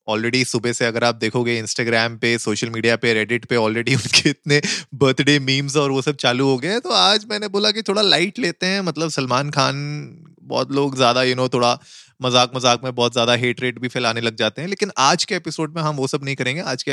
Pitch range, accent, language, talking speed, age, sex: 120-150 Hz, native, Hindi, 225 wpm, 30-49, male